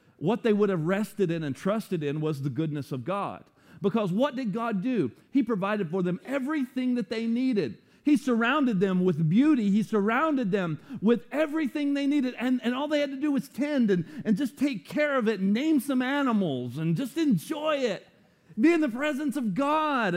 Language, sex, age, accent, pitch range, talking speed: English, male, 40-59, American, 155-255 Hz, 205 wpm